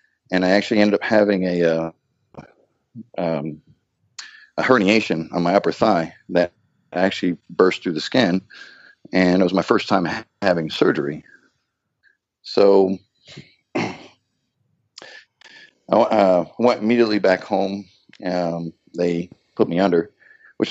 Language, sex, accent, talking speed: English, male, American, 125 wpm